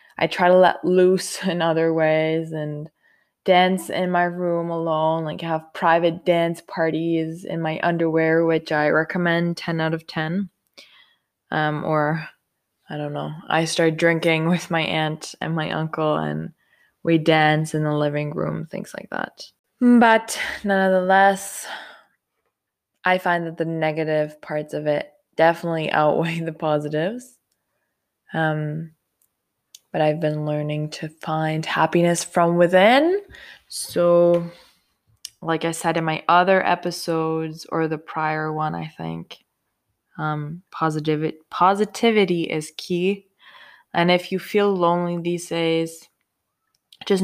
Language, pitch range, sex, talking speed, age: English, 155-175 Hz, female, 130 wpm, 20-39